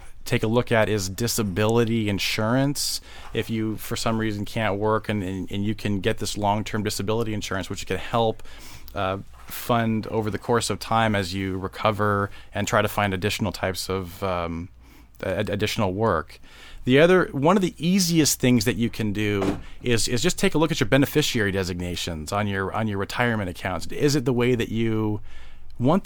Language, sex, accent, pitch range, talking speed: English, male, American, 100-115 Hz, 185 wpm